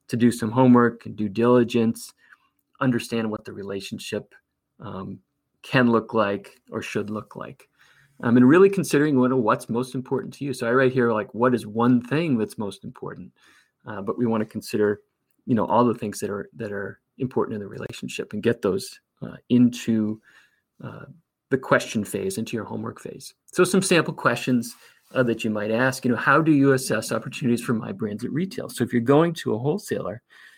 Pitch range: 110-130 Hz